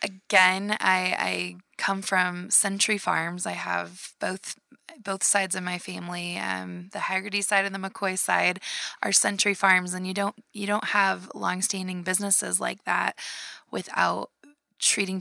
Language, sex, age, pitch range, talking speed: English, female, 20-39, 180-200 Hz, 150 wpm